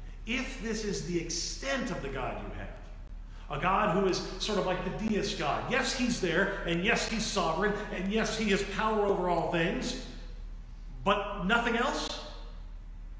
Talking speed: 175 wpm